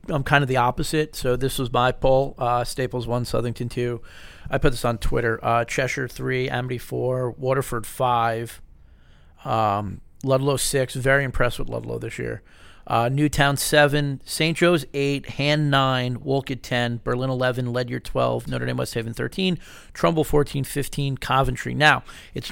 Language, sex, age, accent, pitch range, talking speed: English, male, 40-59, American, 120-145 Hz, 165 wpm